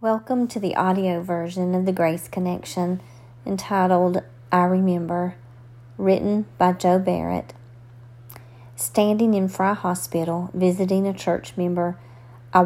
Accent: American